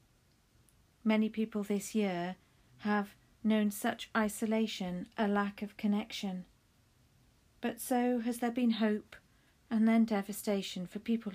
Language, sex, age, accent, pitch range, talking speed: English, female, 40-59, British, 180-220 Hz, 120 wpm